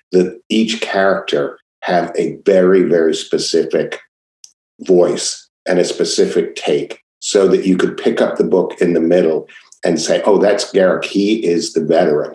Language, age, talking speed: English, 50-69, 160 wpm